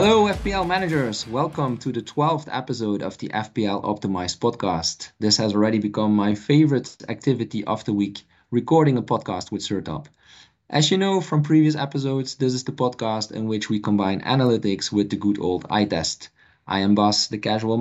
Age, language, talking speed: 20-39, English, 185 wpm